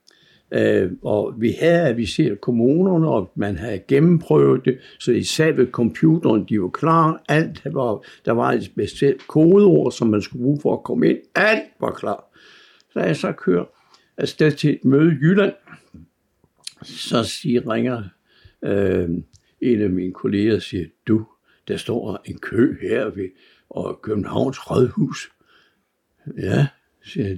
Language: Danish